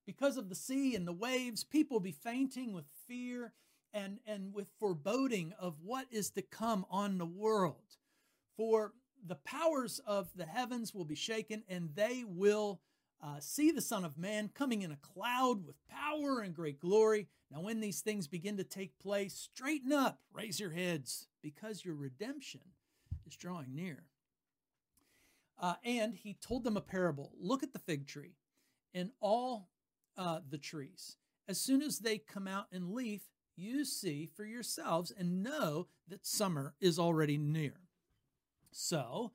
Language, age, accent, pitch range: English, 50-69, American, 175-230 Hz